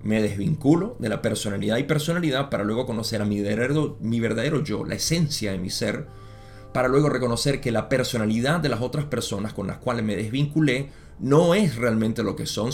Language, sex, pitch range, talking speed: Spanish, male, 105-140 Hz, 200 wpm